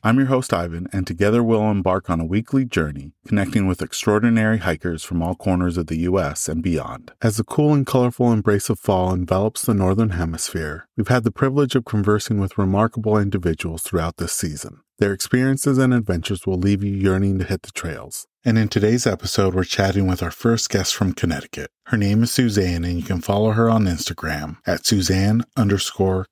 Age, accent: 30-49, American